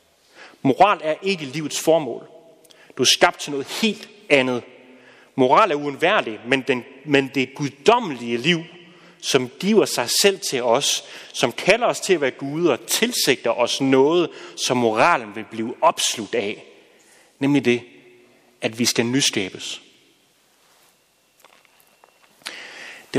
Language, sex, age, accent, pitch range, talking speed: Danish, male, 30-49, native, 125-160 Hz, 125 wpm